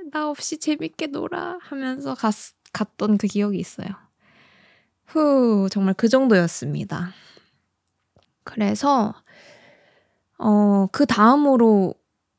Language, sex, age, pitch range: Korean, female, 20-39, 190-240 Hz